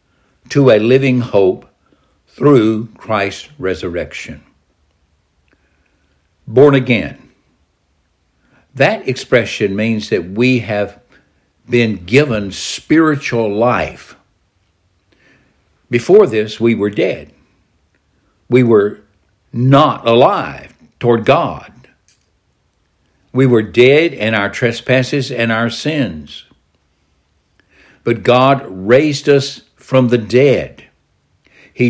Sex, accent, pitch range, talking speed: male, American, 90-125 Hz, 90 wpm